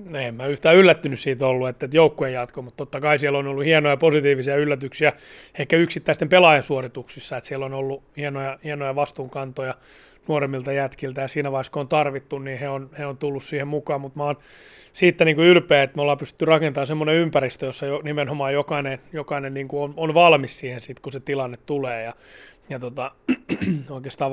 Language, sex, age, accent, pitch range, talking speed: Finnish, male, 30-49, native, 135-150 Hz, 185 wpm